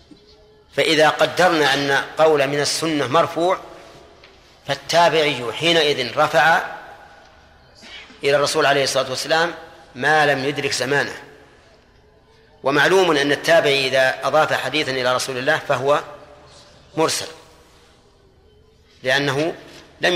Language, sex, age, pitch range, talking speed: Arabic, male, 40-59, 130-155 Hz, 95 wpm